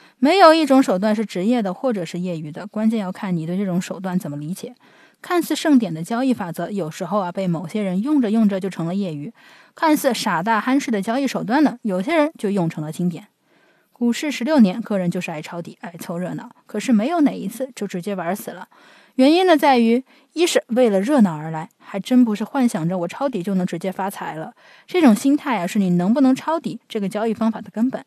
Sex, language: female, Chinese